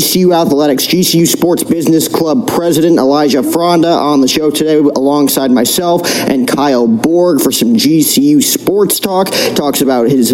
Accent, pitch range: American, 150-190 Hz